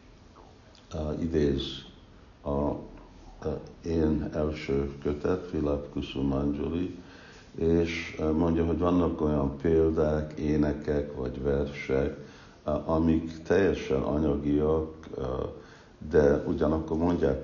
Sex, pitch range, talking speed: male, 70-85 Hz, 85 wpm